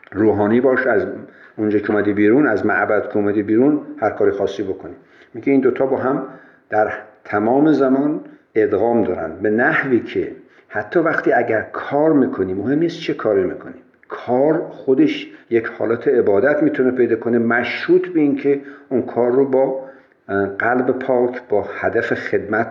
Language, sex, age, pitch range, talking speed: Persian, male, 50-69, 105-145 Hz, 155 wpm